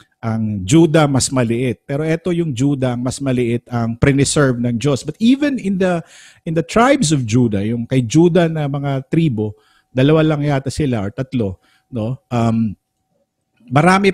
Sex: male